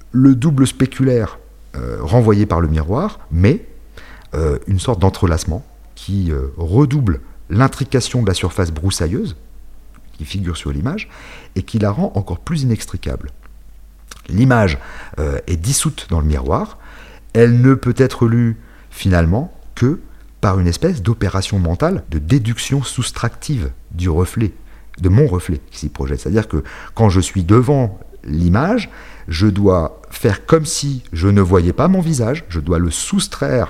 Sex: male